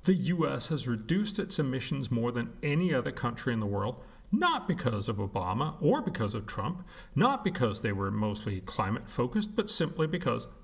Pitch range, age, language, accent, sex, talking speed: 115-195 Hz, 40-59, English, American, male, 180 wpm